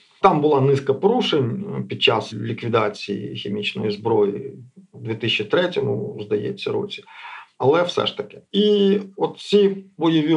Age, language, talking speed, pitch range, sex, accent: 50-69, Ukrainian, 120 wpm, 125-195 Hz, male, native